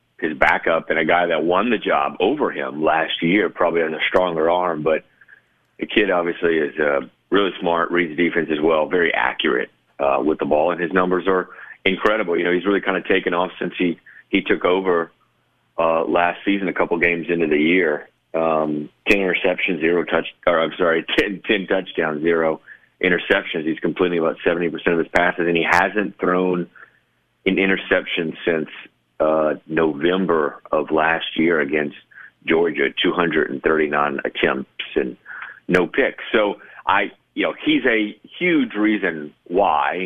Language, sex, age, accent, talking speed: English, male, 40-59, American, 170 wpm